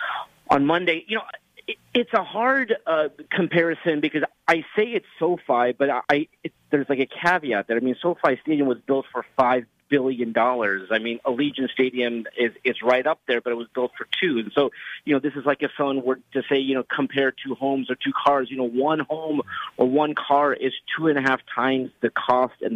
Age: 30-49